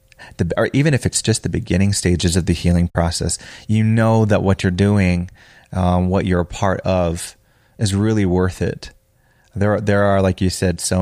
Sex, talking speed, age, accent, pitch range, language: male, 200 wpm, 30-49, American, 95-115 Hz, English